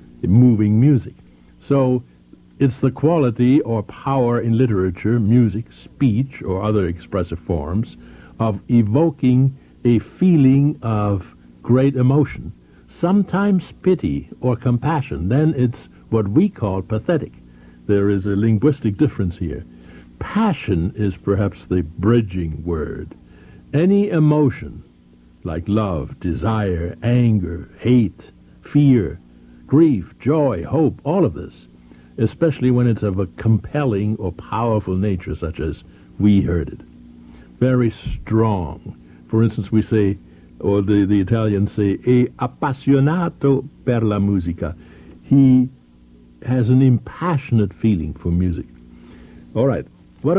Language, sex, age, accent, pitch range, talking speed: English, male, 60-79, American, 85-125 Hz, 120 wpm